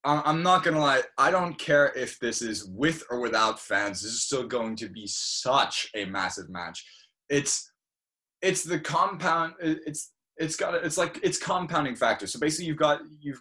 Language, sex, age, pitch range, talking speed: English, male, 20-39, 105-150 Hz, 190 wpm